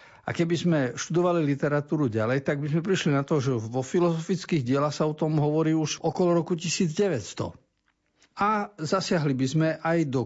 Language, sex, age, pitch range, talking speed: Slovak, male, 50-69, 125-170 Hz, 175 wpm